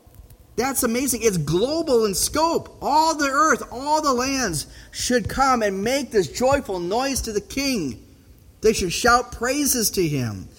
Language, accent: English, American